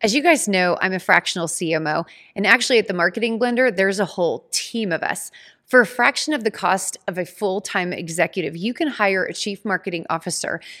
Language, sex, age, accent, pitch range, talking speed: English, female, 30-49, American, 185-245 Hz, 205 wpm